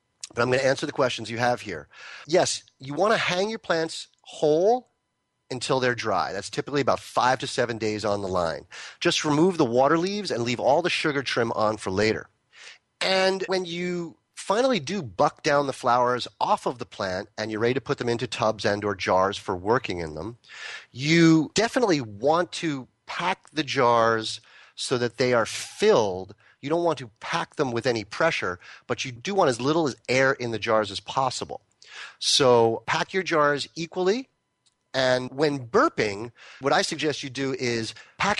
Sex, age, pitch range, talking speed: male, 30-49, 115-160 Hz, 190 wpm